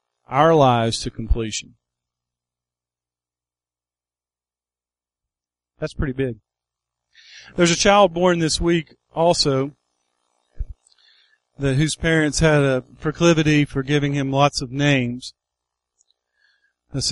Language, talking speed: English, 95 wpm